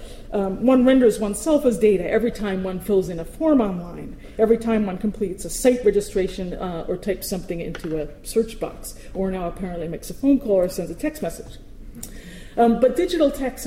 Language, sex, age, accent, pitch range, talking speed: English, female, 40-59, American, 185-230 Hz, 200 wpm